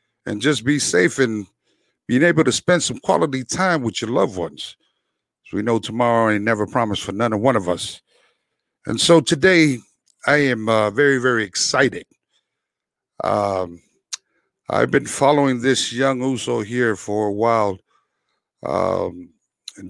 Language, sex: English, male